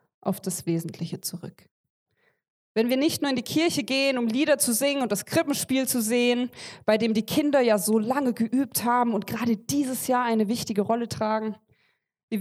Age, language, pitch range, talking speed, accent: 20-39, German, 195-245 Hz, 190 wpm, German